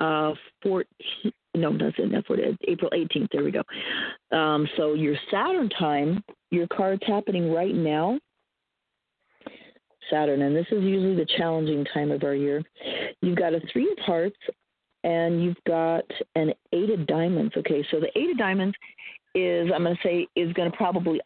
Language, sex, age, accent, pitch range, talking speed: English, female, 40-59, American, 155-195 Hz, 180 wpm